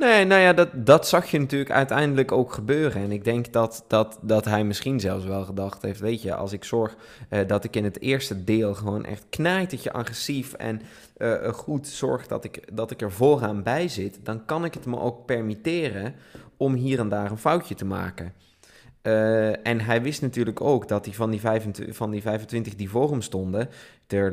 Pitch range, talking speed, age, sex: 105-130 Hz, 210 wpm, 20-39, male